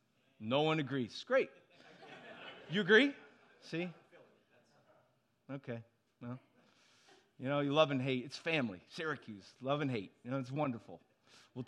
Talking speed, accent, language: 130 wpm, American, English